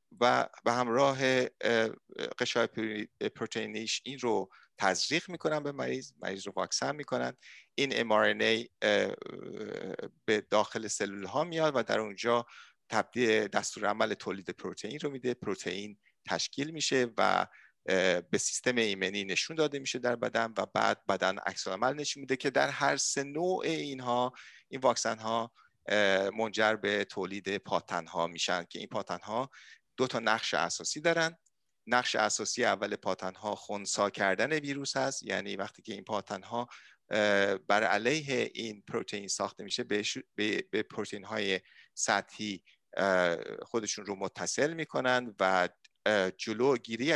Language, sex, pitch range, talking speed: Persian, male, 100-130 Hz, 135 wpm